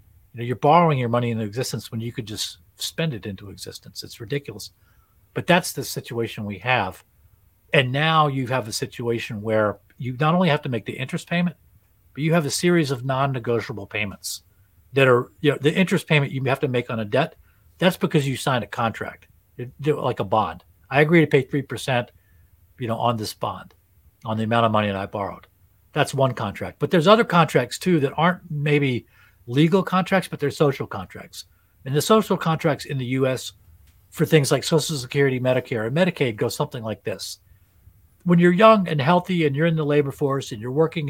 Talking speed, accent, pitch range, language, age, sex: 205 wpm, American, 105-155 Hz, English, 40-59, male